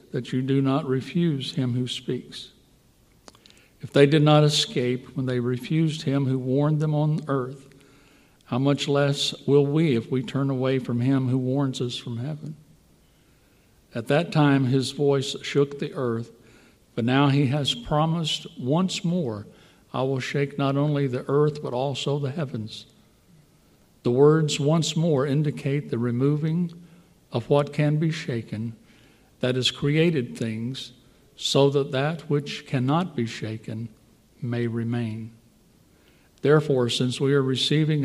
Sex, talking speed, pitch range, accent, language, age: male, 150 wpm, 120-150 Hz, American, English, 60-79